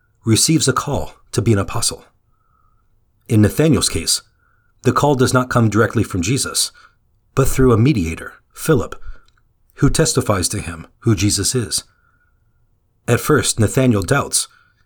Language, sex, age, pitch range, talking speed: English, male, 40-59, 105-125 Hz, 135 wpm